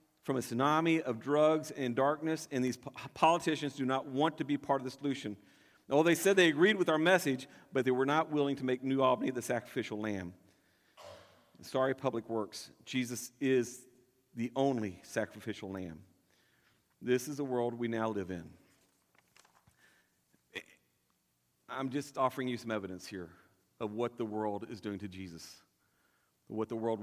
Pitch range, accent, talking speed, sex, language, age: 115-165 Hz, American, 165 wpm, male, English, 40-59